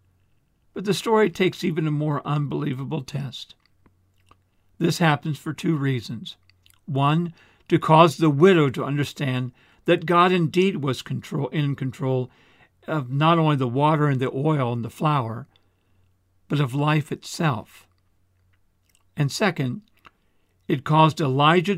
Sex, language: male, English